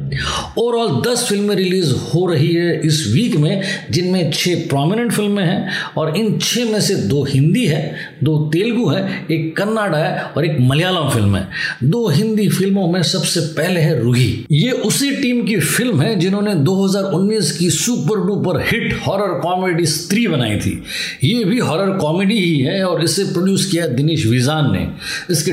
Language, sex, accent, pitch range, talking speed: Hindi, male, native, 150-195 Hz, 170 wpm